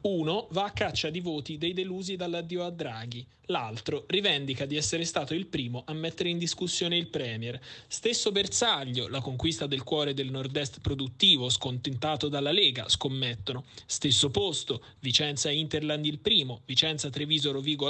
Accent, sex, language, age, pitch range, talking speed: native, male, Italian, 30-49, 130-170 Hz, 150 wpm